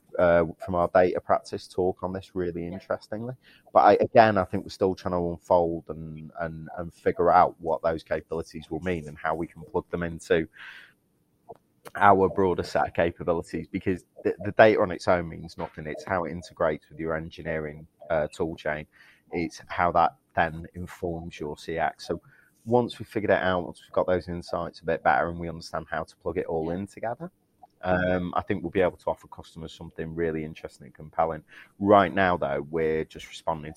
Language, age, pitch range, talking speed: English, 30-49, 80-95 Hz, 195 wpm